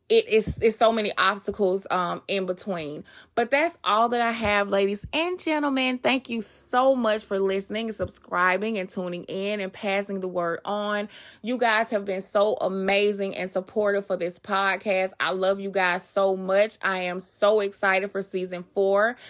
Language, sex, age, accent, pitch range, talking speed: English, female, 20-39, American, 185-225 Hz, 175 wpm